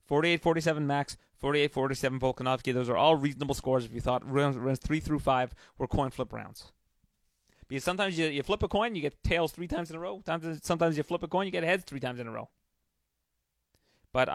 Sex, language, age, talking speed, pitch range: male, English, 30-49, 210 wpm, 120-150 Hz